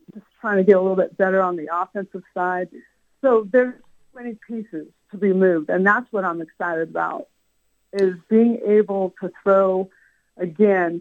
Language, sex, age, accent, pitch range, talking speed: English, female, 50-69, American, 180-225 Hz, 165 wpm